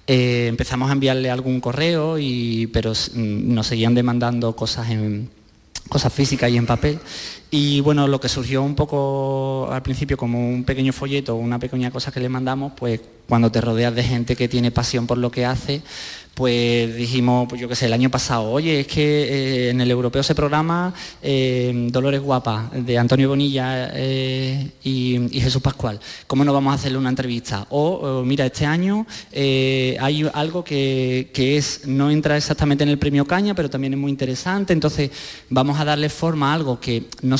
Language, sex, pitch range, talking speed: Spanish, male, 120-140 Hz, 190 wpm